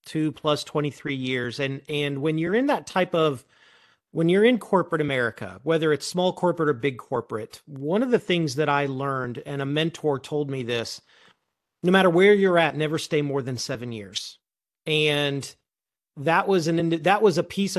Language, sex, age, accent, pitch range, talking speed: English, male, 40-59, American, 140-175 Hz, 190 wpm